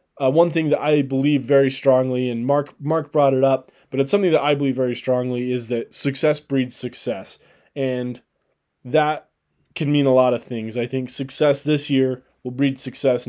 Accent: American